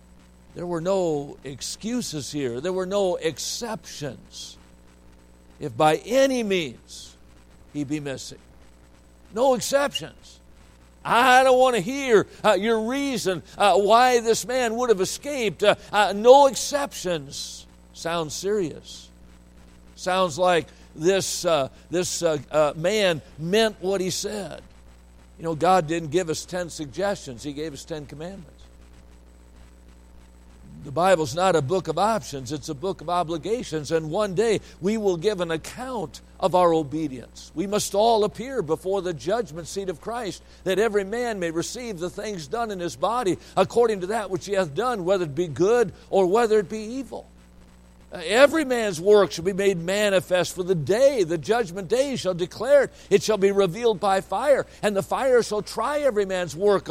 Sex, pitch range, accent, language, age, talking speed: male, 145-210 Hz, American, English, 60-79, 160 wpm